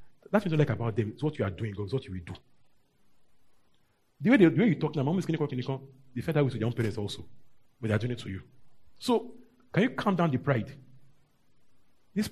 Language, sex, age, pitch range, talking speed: English, male, 40-59, 120-155 Hz, 250 wpm